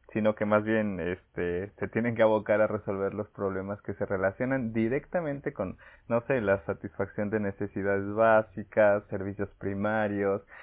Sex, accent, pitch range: male, Mexican, 100-115 Hz